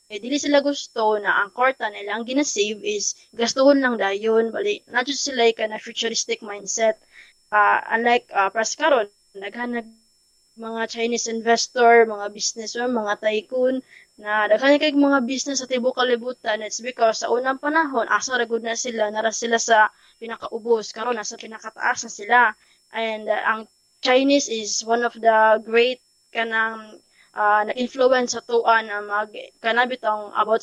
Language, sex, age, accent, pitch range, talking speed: Filipino, female, 20-39, native, 215-265 Hz, 155 wpm